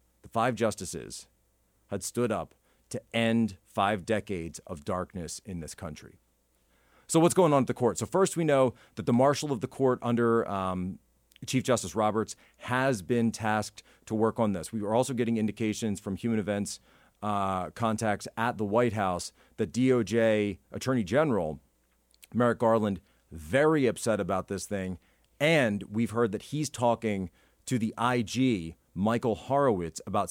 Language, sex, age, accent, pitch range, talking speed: English, male, 40-59, American, 95-115 Hz, 160 wpm